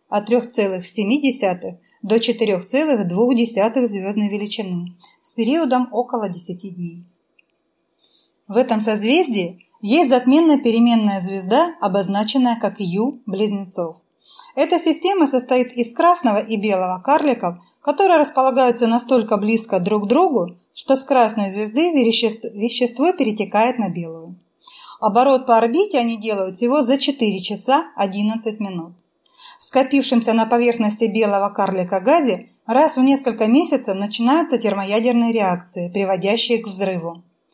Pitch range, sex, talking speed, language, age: 195-255 Hz, female, 115 wpm, Russian, 30-49